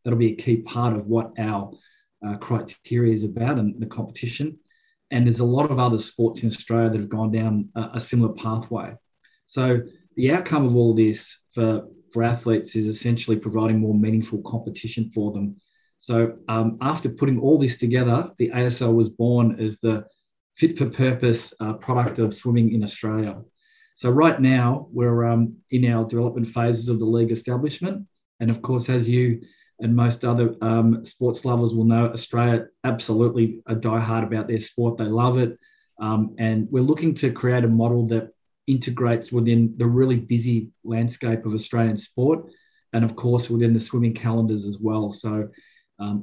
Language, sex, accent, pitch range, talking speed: English, male, Australian, 110-120 Hz, 175 wpm